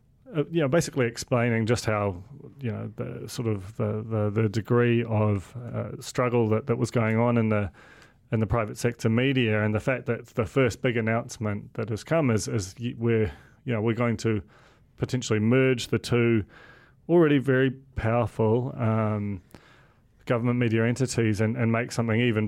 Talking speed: 175 wpm